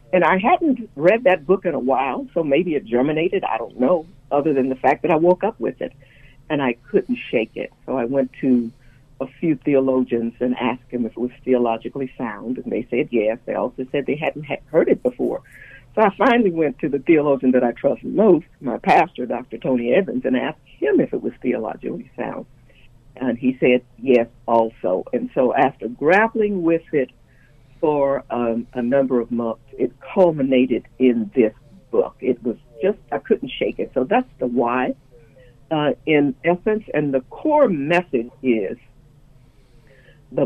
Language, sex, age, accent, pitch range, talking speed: English, female, 60-79, American, 125-160 Hz, 185 wpm